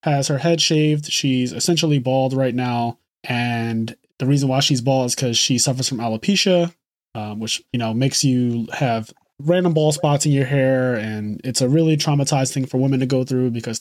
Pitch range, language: 130-165 Hz, English